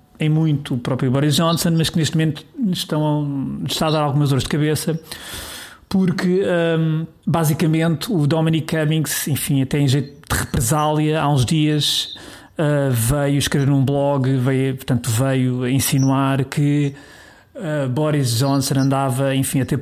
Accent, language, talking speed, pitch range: Portuguese, Portuguese, 155 wpm, 130-150 Hz